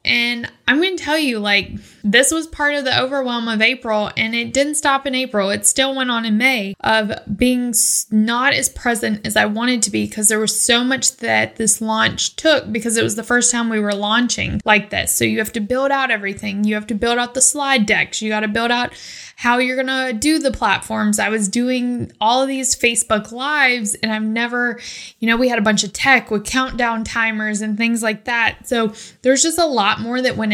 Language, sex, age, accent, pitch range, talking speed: English, female, 10-29, American, 215-255 Hz, 230 wpm